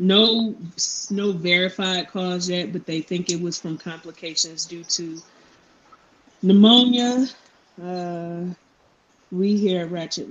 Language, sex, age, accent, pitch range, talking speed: English, female, 20-39, American, 160-185 Hz, 115 wpm